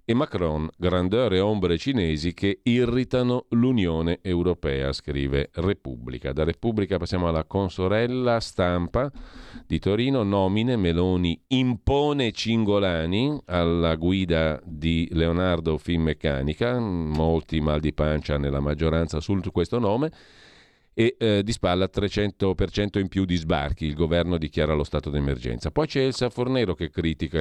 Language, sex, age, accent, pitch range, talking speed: Italian, male, 40-59, native, 80-105 Hz, 130 wpm